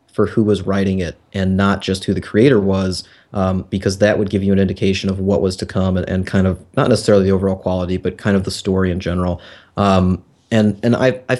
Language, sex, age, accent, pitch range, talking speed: English, male, 30-49, American, 95-110 Hz, 240 wpm